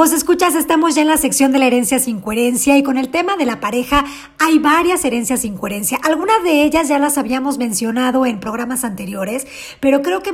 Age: 40-59